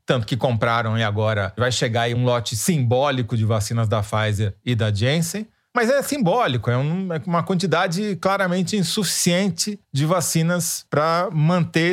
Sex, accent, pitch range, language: male, Brazilian, 125-180 Hz, Portuguese